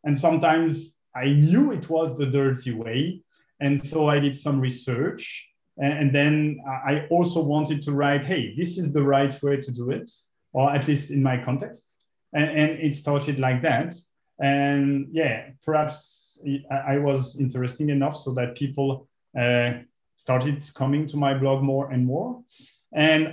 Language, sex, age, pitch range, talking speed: English, male, 30-49, 130-155 Hz, 165 wpm